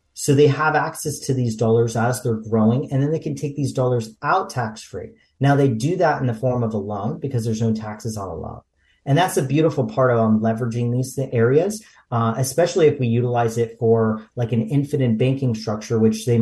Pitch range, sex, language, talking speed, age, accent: 115-140 Hz, male, English, 220 wpm, 40-59, American